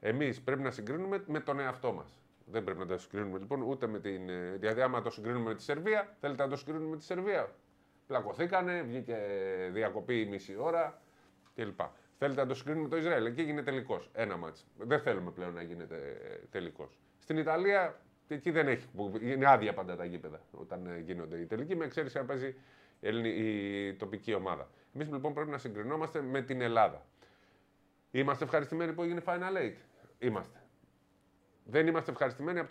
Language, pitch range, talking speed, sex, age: Greek, 95-145 Hz, 180 wpm, male, 30-49